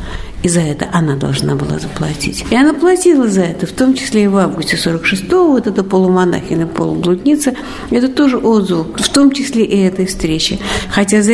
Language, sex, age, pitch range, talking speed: Russian, female, 60-79, 180-240 Hz, 180 wpm